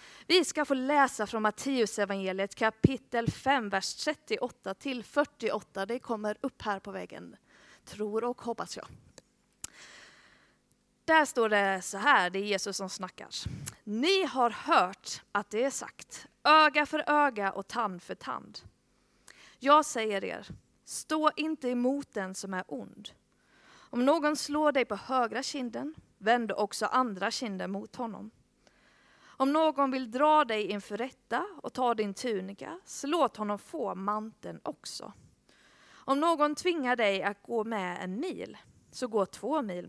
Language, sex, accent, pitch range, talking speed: Swedish, female, native, 200-280 Hz, 150 wpm